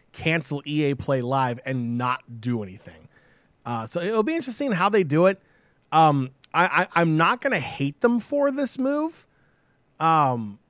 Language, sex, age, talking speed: English, male, 20-39, 165 wpm